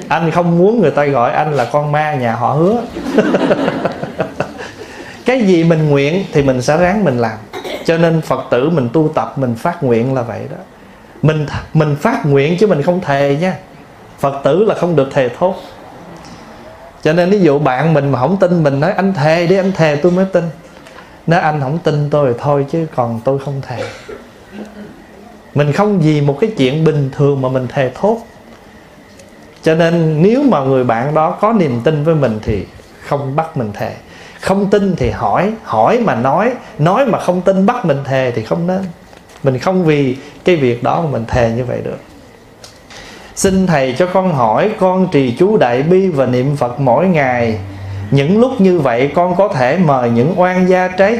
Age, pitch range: 20-39, 130-185 Hz